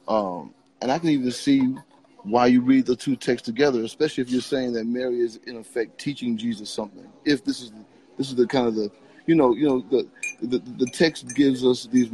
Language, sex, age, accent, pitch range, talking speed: English, male, 30-49, American, 110-130 Hz, 220 wpm